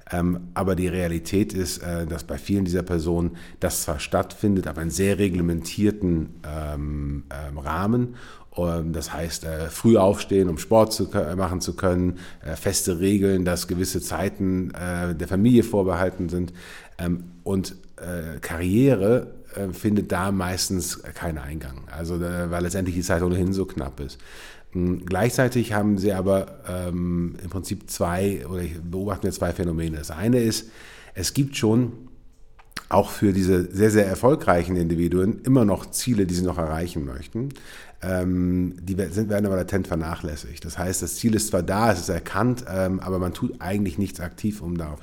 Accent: German